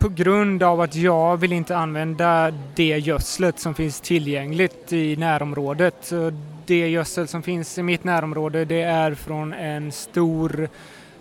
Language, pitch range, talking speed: Swedish, 150-170 Hz, 150 wpm